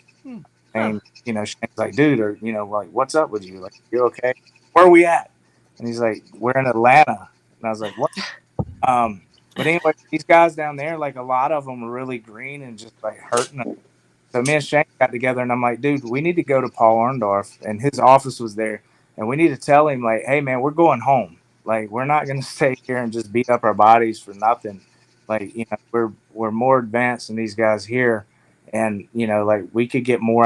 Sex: male